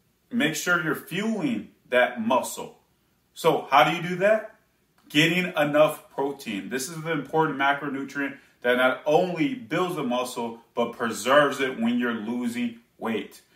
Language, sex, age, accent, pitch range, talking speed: English, male, 30-49, American, 130-165 Hz, 145 wpm